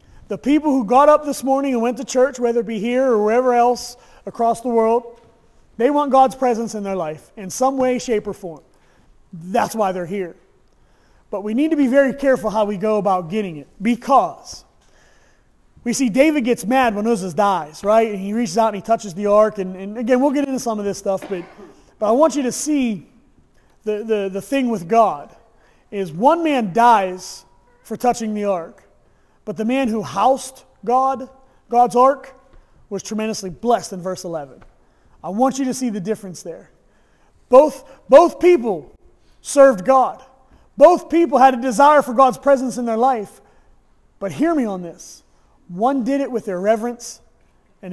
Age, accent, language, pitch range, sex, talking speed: 30-49, American, Russian, 200-265 Hz, male, 190 wpm